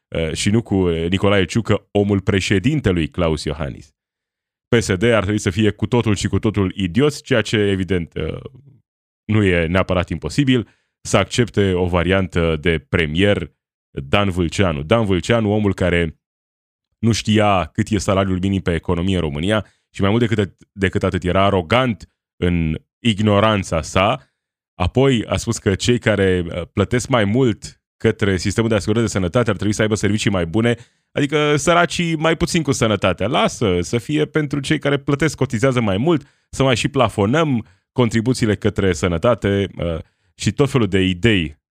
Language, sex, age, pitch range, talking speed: Romanian, male, 20-39, 90-120 Hz, 155 wpm